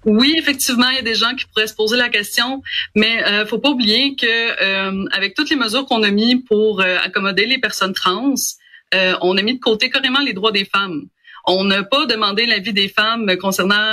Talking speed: 230 wpm